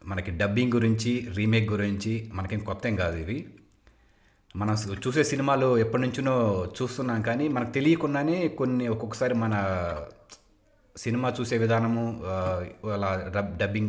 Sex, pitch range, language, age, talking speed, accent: male, 100-115 Hz, Telugu, 30-49, 120 wpm, native